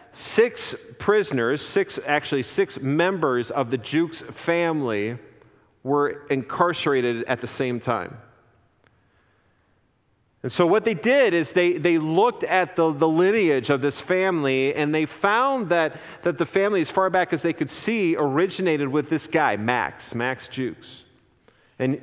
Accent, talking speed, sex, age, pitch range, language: American, 145 wpm, male, 40-59, 135-175 Hz, English